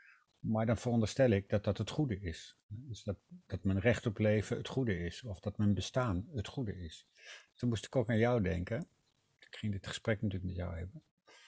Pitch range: 100-115 Hz